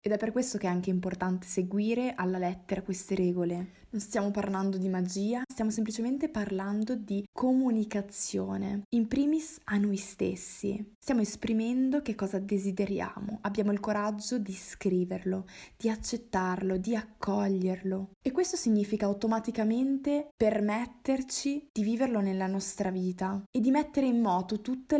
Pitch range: 195-235 Hz